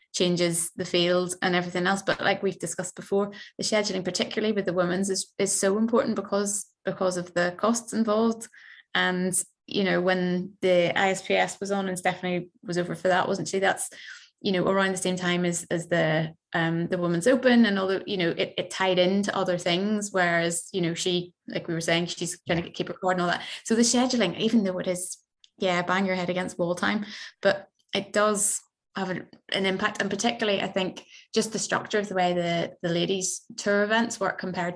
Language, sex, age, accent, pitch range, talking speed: English, female, 20-39, British, 175-195 Hz, 205 wpm